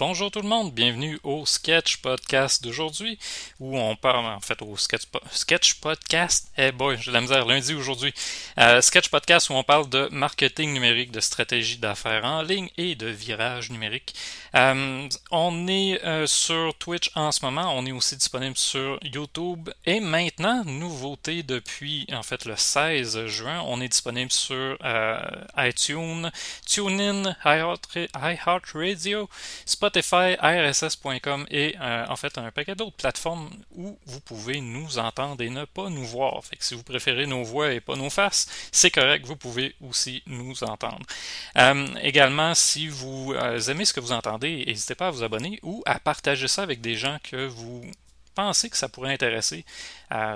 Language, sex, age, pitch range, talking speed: French, male, 30-49, 125-165 Hz, 175 wpm